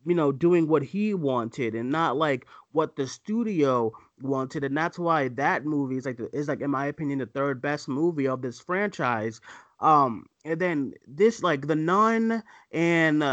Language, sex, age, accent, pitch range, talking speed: English, male, 30-49, American, 135-190 Hz, 185 wpm